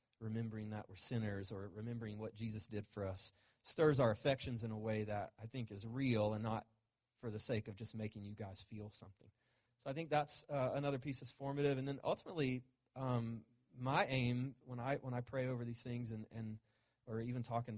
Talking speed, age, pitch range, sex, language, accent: 210 wpm, 30-49, 105-120 Hz, male, English, American